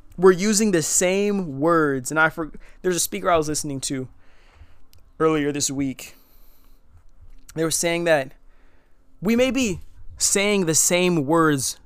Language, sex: English, male